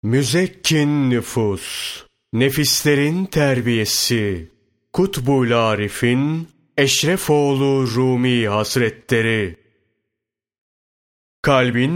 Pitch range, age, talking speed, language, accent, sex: 110-145 Hz, 30-49, 50 wpm, Turkish, native, male